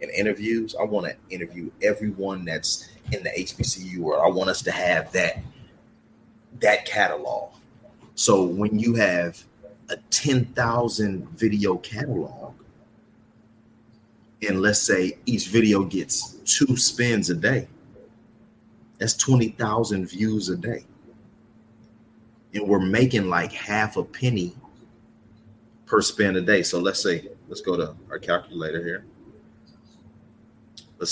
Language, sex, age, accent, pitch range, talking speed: English, male, 30-49, American, 100-115 Hz, 125 wpm